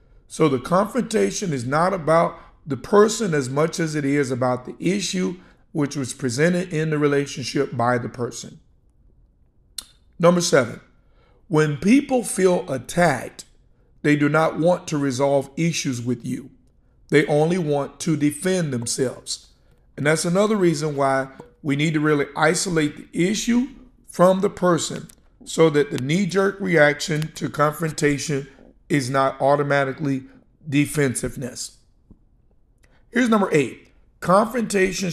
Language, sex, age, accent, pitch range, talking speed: English, male, 50-69, American, 140-180 Hz, 130 wpm